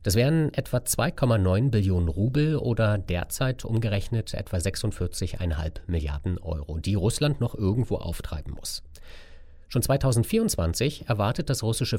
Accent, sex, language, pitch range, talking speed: German, male, German, 85-120 Hz, 120 wpm